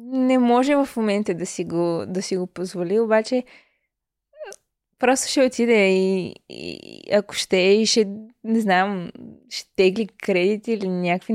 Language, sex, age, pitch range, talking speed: Bulgarian, female, 20-39, 195-235 Hz, 150 wpm